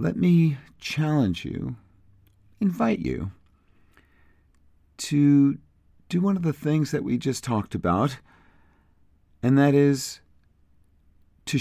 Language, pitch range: English, 75-110 Hz